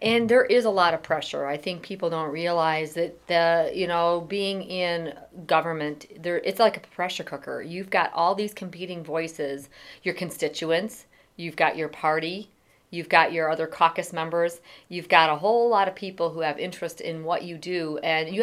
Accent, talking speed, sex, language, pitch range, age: American, 190 wpm, female, English, 160-200 Hz, 40-59